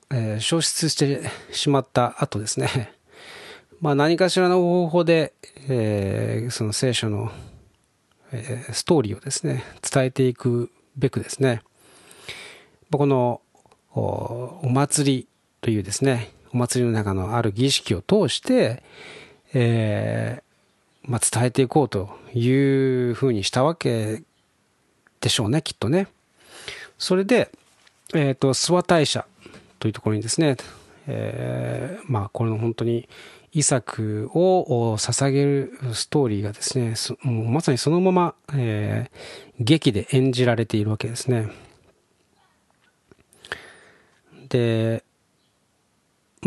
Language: Japanese